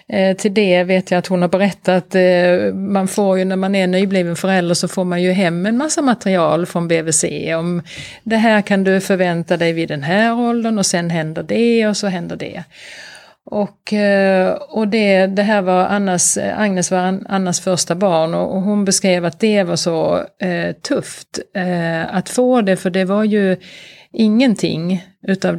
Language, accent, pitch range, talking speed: Swedish, native, 175-210 Hz, 170 wpm